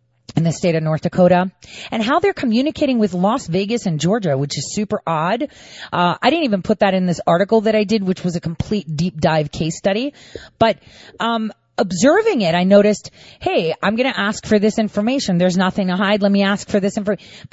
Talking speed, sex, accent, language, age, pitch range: 210 wpm, female, American, English, 30-49, 190-275 Hz